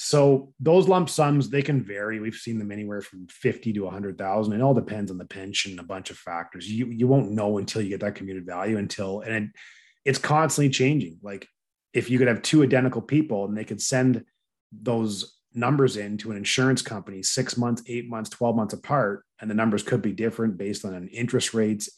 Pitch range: 100-130 Hz